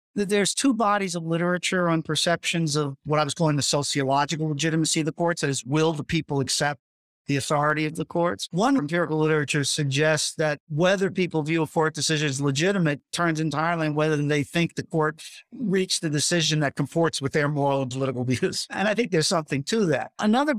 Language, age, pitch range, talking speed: English, 50-69, 145-180 Hz, 200 wpm